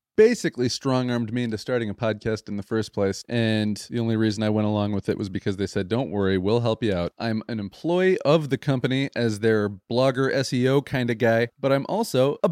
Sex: male